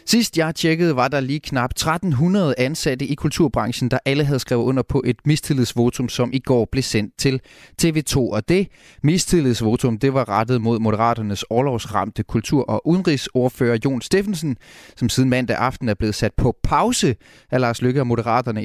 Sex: male